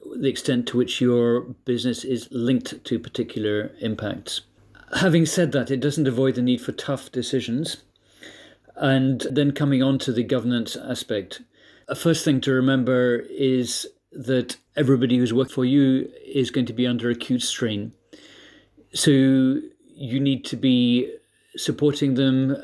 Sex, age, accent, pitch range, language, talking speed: male, 40-59, British, 120-140 Hz, English, 145 wpm